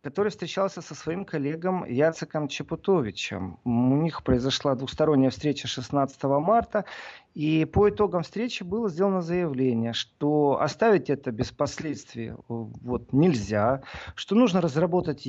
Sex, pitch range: male, 130-185 Hz